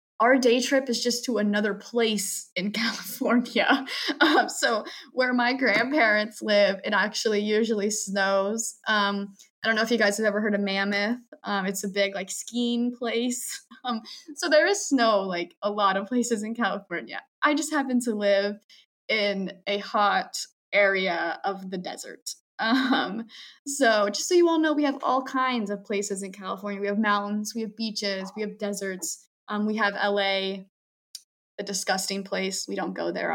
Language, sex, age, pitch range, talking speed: English, female, 10-29, 200-240 Hz, 175 wpm